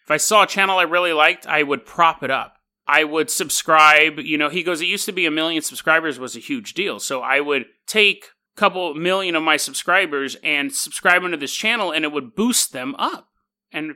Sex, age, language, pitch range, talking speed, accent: male, 30-49, English, 145-195 Hz, 230 wpm, American